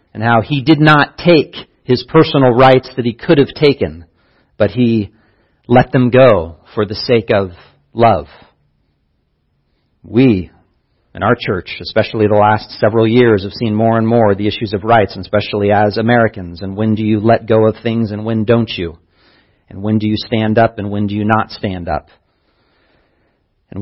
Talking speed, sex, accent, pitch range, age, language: 180 wpm, male, American, 95-120 Hz, 40-59, English